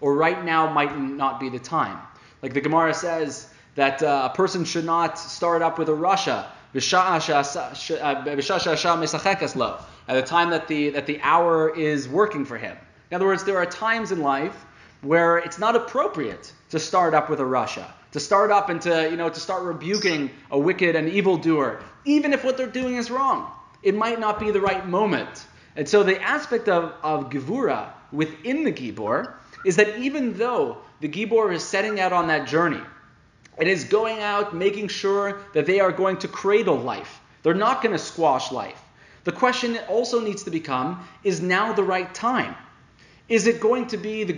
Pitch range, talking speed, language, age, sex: 155-210 Hz, 190 wpm, English, 20-39, male